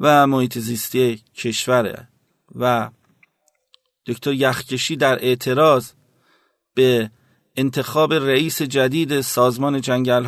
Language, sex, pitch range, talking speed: Persian, male, 125-140 Hz, 90 wpm